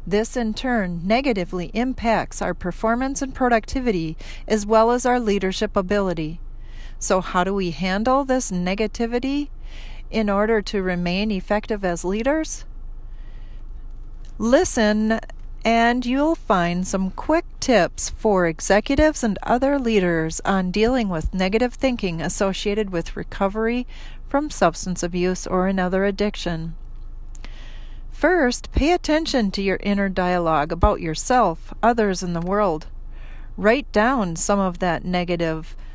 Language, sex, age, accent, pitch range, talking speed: English, female, 40-59, American, 180-235 Hz, 125 wpm